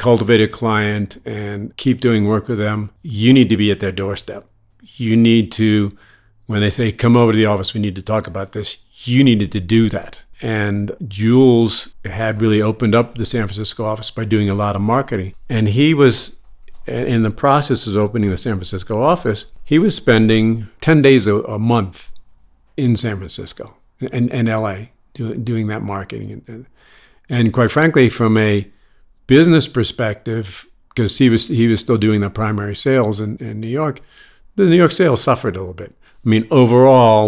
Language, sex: English, male